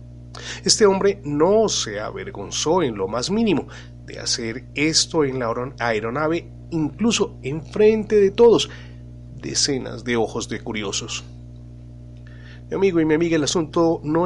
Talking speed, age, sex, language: 135 wpm, 30-49, male, Spanish